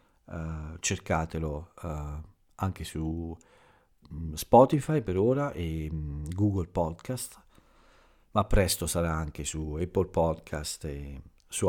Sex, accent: male, native